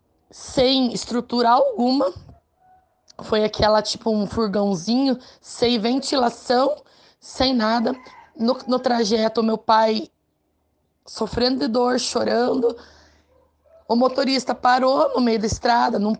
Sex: female